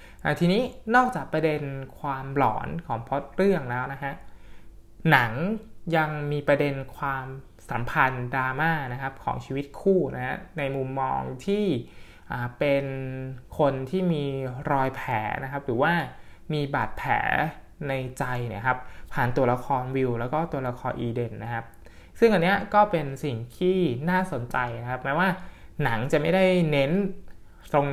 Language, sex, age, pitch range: Thai, male, 20-39, 130-165 Hz